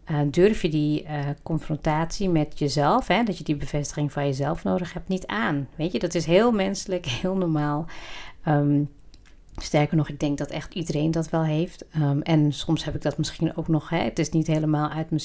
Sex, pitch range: female, 145-180 Hz